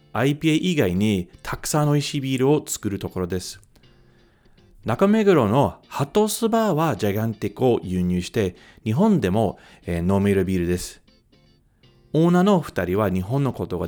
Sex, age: male, 40-59